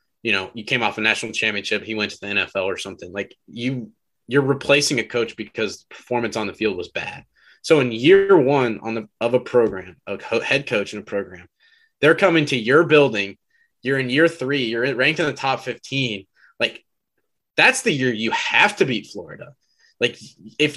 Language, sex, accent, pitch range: English, male, American, 115-150 Hz